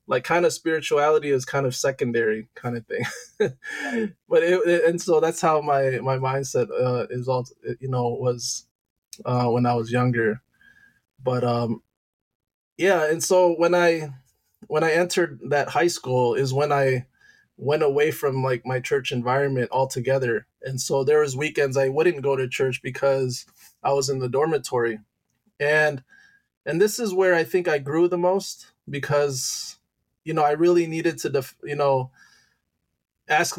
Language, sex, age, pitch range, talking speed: English, male, 20-39, 130-165 Hz, 170 wpm